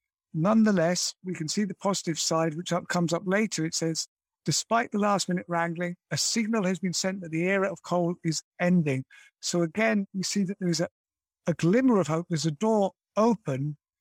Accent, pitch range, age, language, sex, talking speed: British, 160-190 Hz, 60-79, English, male, 195 wpm